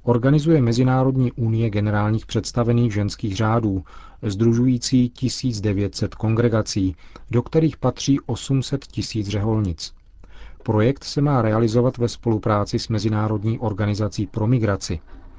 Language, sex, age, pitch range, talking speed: Czech, male, 40-59, 105-120 Hz, 105 wpm